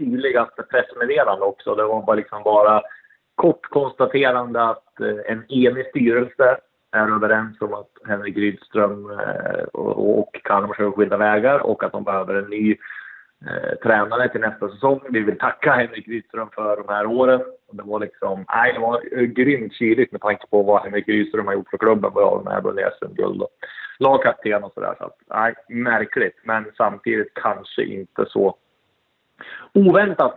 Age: 30-49